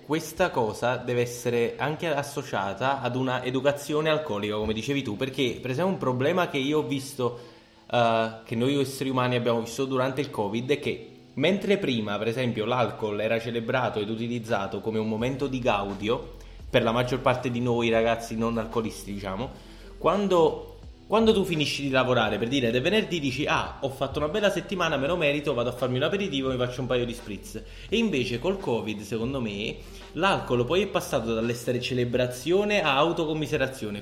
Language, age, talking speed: Italian, 20-39, 180 wpm